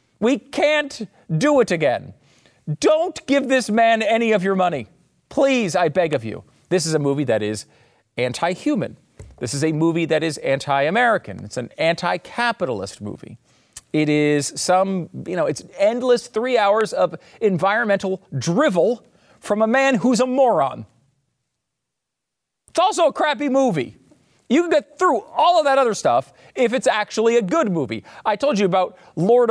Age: 40-59